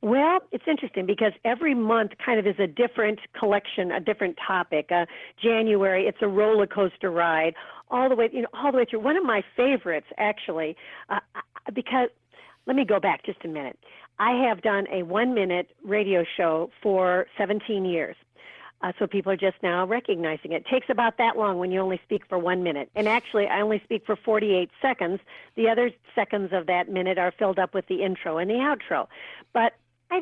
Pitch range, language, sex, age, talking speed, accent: 185-230 Hz, English, female, 50-69, 200 wpm, American